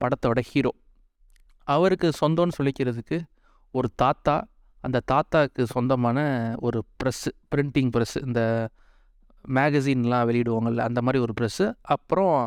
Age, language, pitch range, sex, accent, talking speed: 30-49, Tamil, 125-165 Hz, male, native, 105 wpm